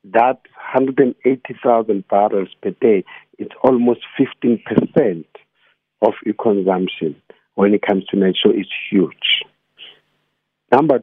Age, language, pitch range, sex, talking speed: 50-69, English, 95-115 Hz, male, 105 wpm